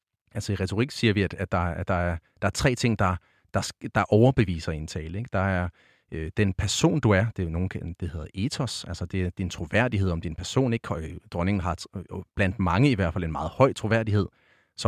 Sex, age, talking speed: male, 30-49, 225 wpm